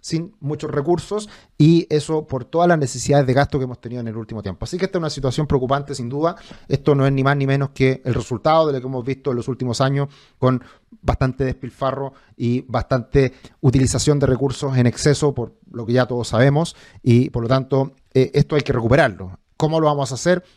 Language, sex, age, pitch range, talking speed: Spanish, male, 30-49, 125-150 Hz, 220 wpm